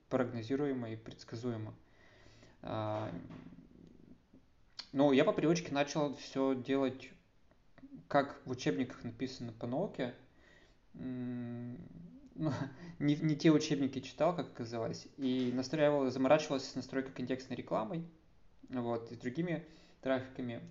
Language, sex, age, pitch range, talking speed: Russian, male, 20-39, 120-135 Hz, 100 wpm